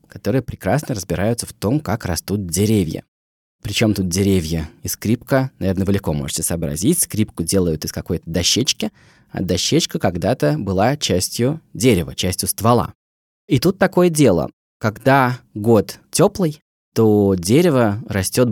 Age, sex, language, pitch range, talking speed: 20-39, male, Russian, 95-135 Hz, 135 wpm